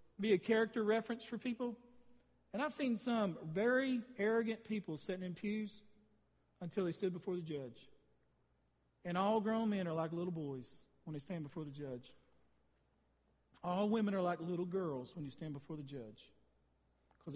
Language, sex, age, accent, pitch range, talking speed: English, male, 40-59, American, 165-225 Hz, 170 wpm